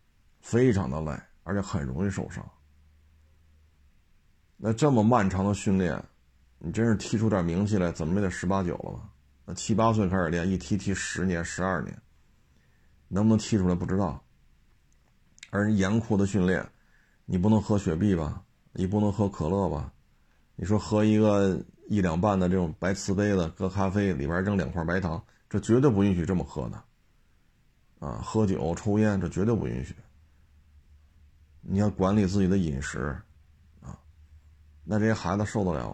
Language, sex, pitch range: Chinese, male, 80-105 Hz